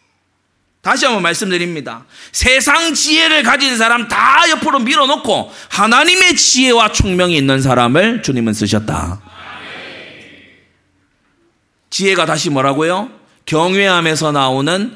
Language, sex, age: Korean, male, 30-49